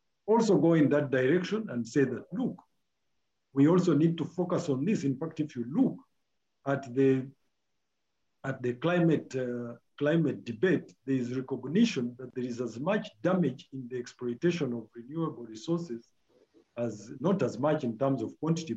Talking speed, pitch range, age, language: 165 wpm, 120-155 Hz, 50-69, English